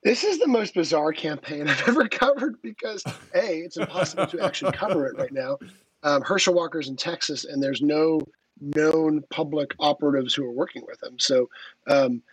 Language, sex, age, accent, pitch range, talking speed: English, male, 30-49, American, 140-180 Hz, 180 wpm